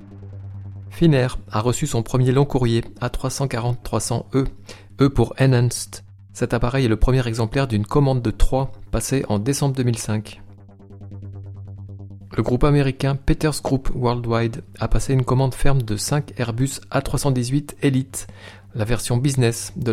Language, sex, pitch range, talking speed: French, male, 100-130 Hz, 135 wpm